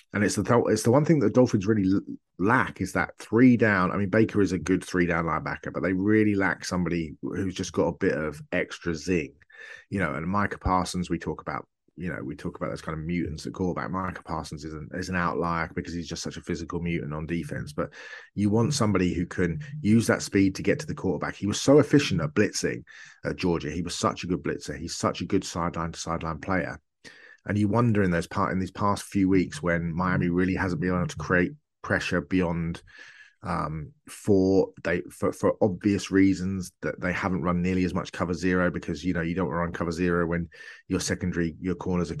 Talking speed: 225 wpm